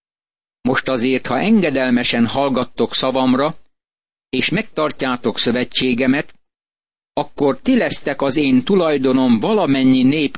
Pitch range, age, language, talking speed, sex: 125-160 Hz, 60-79, Hungarian, 100 wpm, male